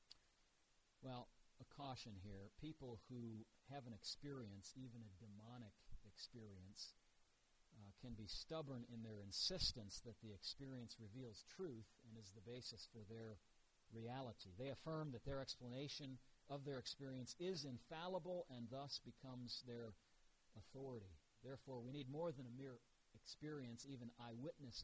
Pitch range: 110-140 Hz